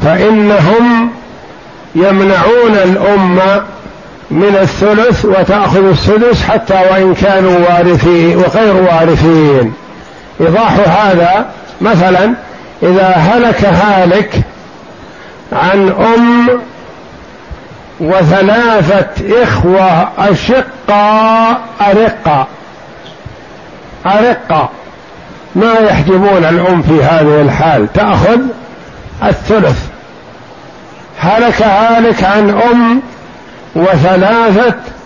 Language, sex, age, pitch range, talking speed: Arabic, male, 60-79, 185-225 Hz, 65 wpm